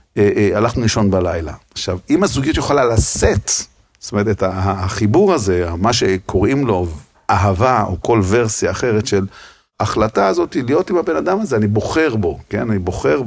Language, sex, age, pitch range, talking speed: Hebrew, male, 50-69, 95-125 Hz, 165 wpm